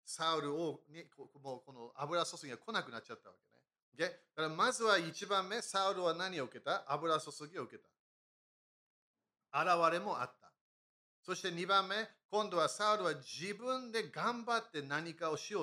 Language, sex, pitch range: Japanese, male, 145-210 Hz